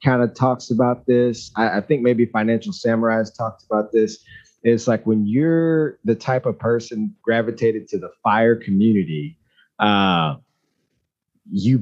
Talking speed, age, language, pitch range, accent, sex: 150 wpm, 30-49, English, 110-130 Hz, American, male